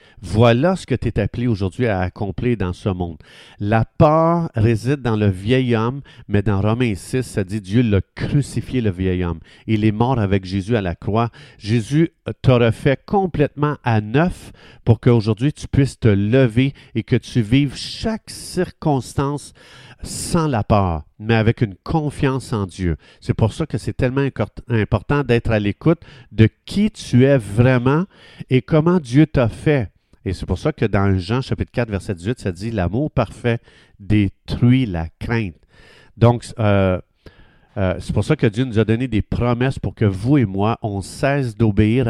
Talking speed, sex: 180 wpm, male